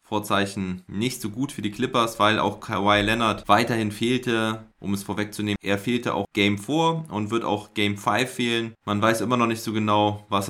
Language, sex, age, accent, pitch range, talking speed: German, male, 20-39, German, 100-115 Hz, 200 wpm